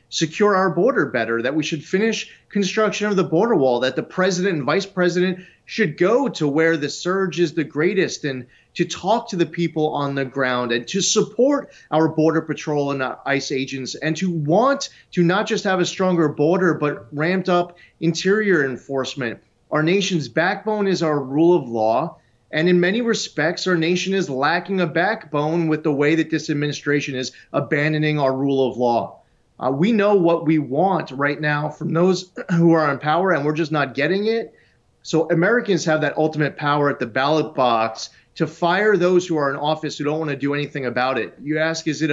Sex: male